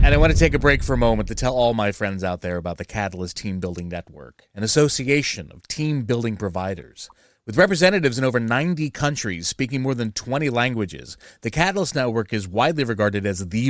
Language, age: English, 30-49